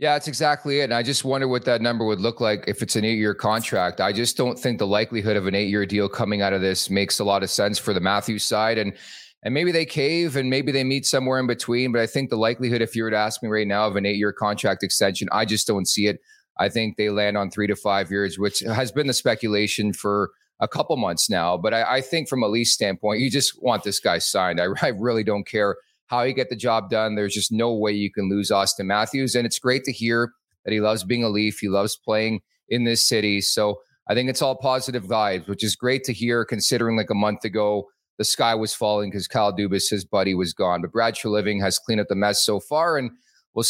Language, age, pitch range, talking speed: English, 30-49, 105-130 Hz, 260 wpm